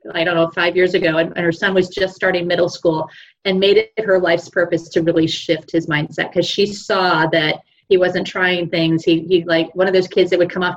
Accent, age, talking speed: American, 30-49, 245 wpm